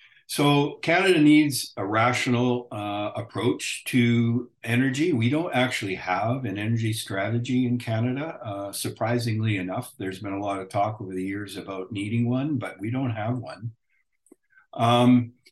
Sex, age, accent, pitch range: male, 50-69, American, 100-125 Hz